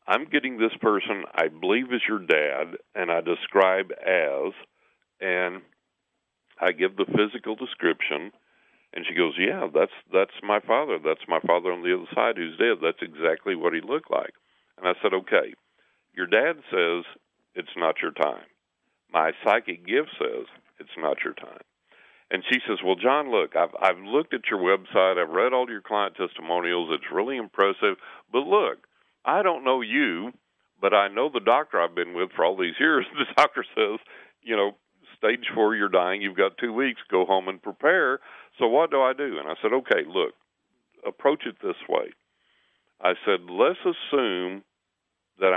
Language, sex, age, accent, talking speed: English, male, 50-69, American, 180 wpm